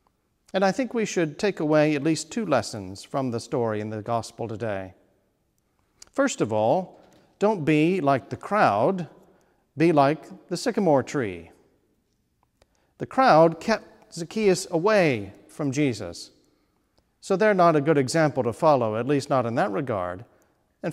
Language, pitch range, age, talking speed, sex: English, 115-170 Hz, 50-69, 150 wpm, male